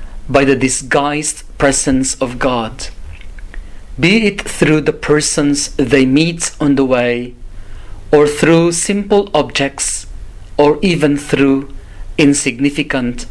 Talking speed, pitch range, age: 110 wpm, 95-150 Hz, 40-59